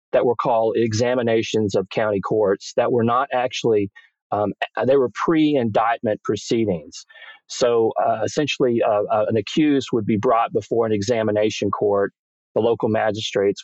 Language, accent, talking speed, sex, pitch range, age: English, American, 145 wpm, male, 100-125 Hz, 40-59